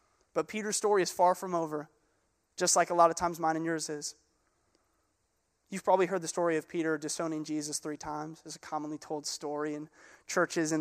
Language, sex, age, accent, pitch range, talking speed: English, male, 20-39, American, 170-225 Hz, 200 wpm